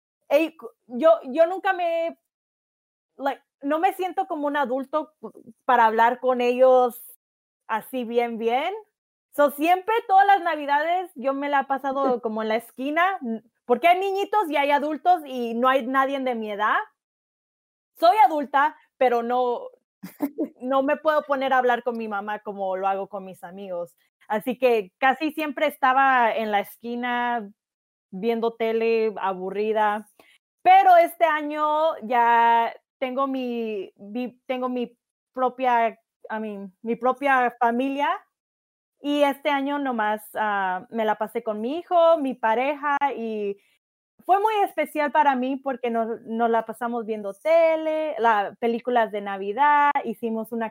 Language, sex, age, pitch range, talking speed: Spanish, female, 20-39, 225-295 Hz, 145 wpm